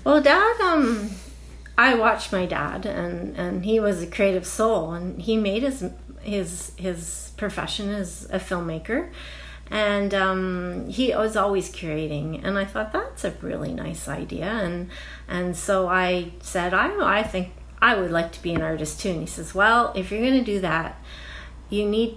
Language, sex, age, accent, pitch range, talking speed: English, female, 30-49, American, 160-205 Hz, 180 wpm